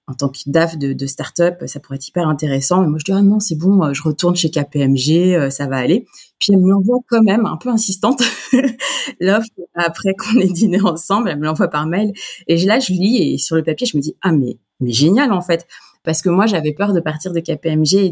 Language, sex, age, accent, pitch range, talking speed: French, female, 30-49, French, 150-190 Hz, 260 wpm